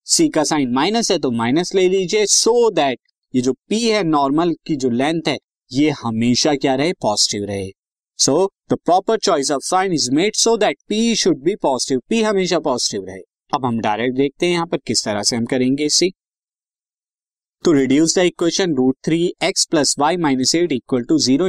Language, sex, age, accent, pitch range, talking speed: Hindi, male, 20-39, native, 125-190 Hz, 200 wpm